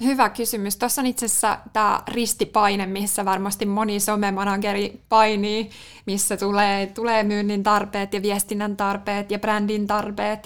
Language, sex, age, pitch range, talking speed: Finnish, female, 20-39, 200-215 Hz, 140 wpm